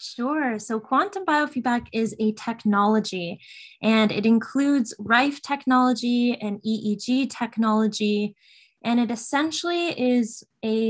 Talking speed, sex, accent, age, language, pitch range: 110 wpm, female, American, 20-39, English, 210-240 Hz